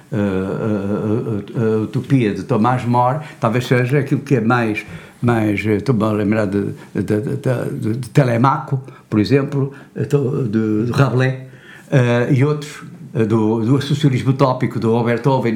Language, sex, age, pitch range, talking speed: Portuguese, male, 60-79, 135-195 Hz, 145 wpm